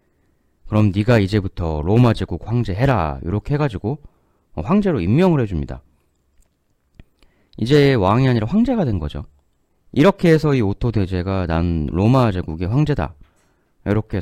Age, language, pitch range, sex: 30-49, Korean, 75-120 Hz, male